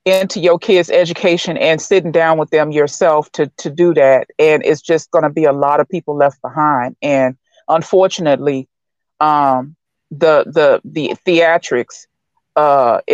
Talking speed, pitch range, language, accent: 155 wpm, 150-195 Hz, English, American